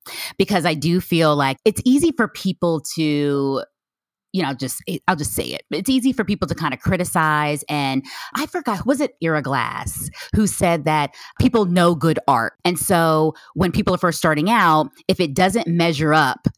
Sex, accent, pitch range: female, American, 145-185 Hz